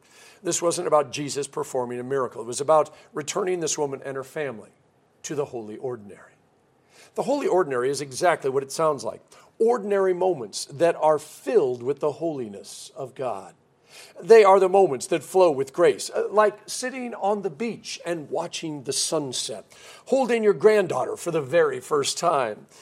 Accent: American